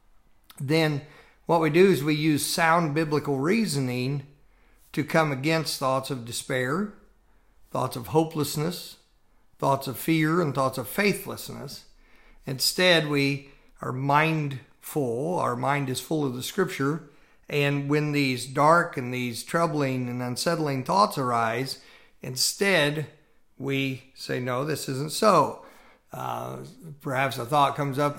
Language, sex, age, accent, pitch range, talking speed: English, male, 50-69, American, 125-155 Hz, 130 wpm